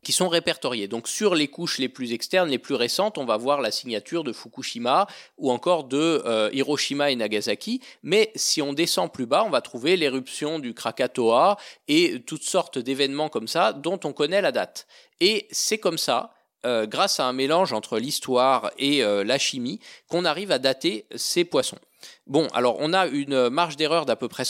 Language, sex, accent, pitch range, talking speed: French, male, French, 135-205 Hz, 200 wpm